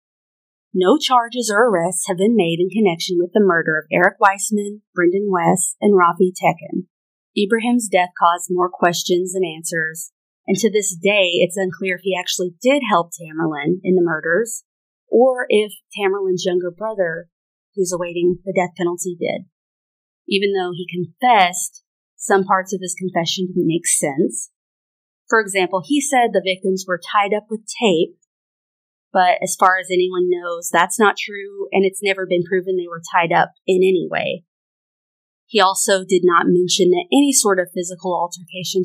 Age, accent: 30-49, American